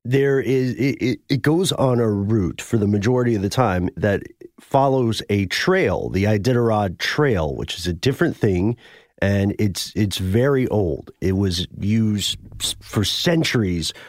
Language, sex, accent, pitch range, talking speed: English, male, American, 95-115 Hz, 160 wpm